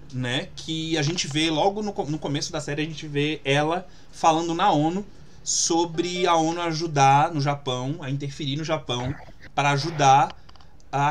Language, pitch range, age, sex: Portuguese, 130-165 Hz, 20-39, male